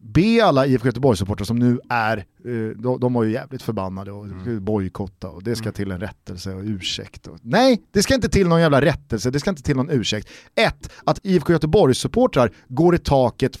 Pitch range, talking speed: 115-160 Hz, 205 wpm